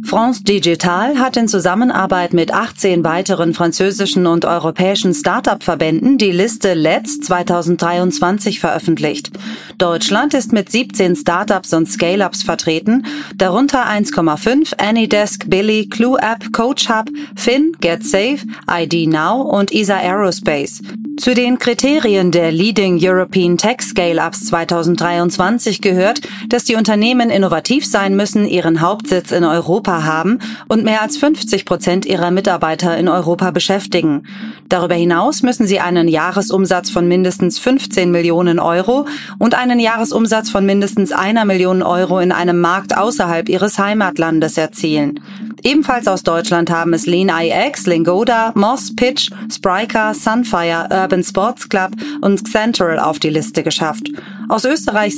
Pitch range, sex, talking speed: 175-225 Hz, female, 130 wpm